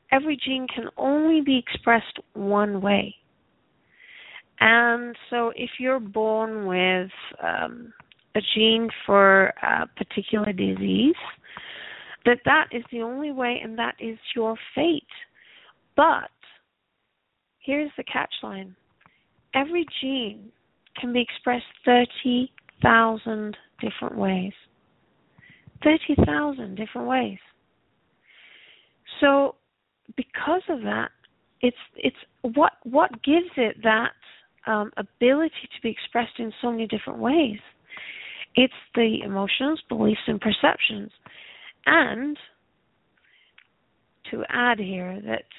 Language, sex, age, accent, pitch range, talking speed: English, female, 30-49, American, 215-260 Hz, 105 wpm